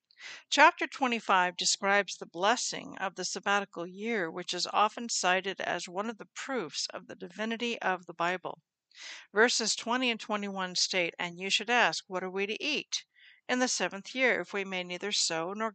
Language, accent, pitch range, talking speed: English, American, 180-235 Hz, 185 wpm